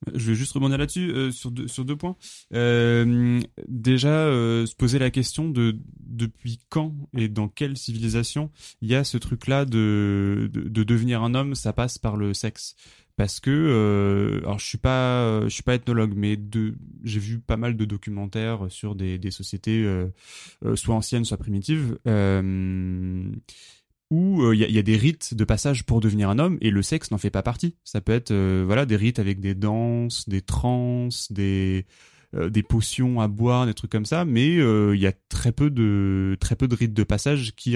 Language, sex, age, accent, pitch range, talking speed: French, male, 20-39, French, 105-130 Hz, 205 wpm